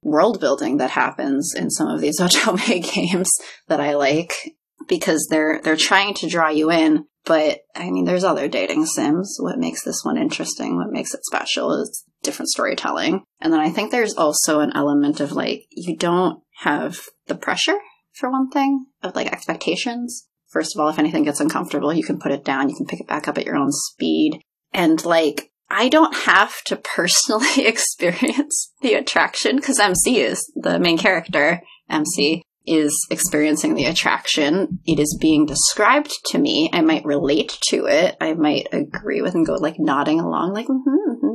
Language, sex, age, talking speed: English, female, 20-39, 185 wpm